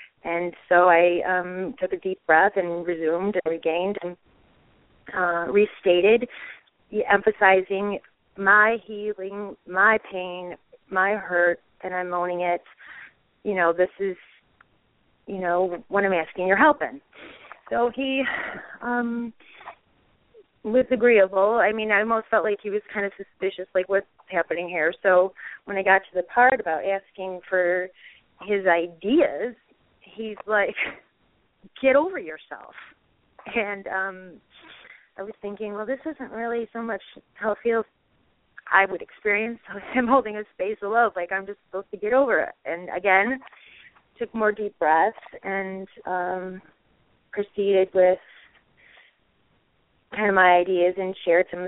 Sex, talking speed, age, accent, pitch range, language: female, 145 wpm, 30-49, American, 180-210 Hz, English